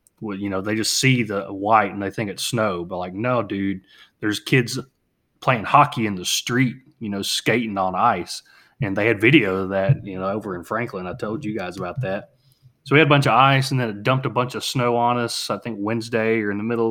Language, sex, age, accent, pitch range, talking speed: English, male, 30-49, American, 100-120 Hz, 250 wpm